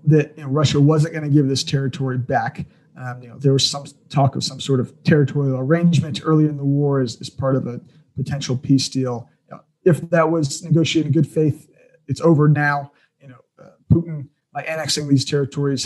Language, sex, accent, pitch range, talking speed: English, male, American, 135-155 Hz, 210 wpm